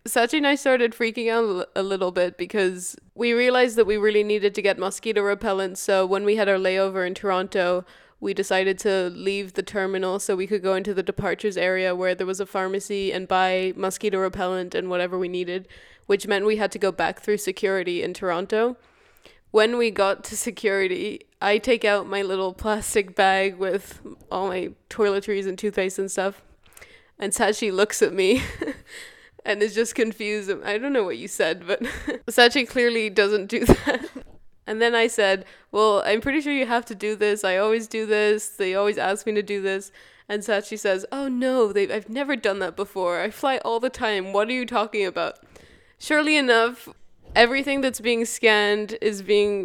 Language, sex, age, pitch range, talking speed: English, female, 20-39, 190-220 Hz, 195 wpm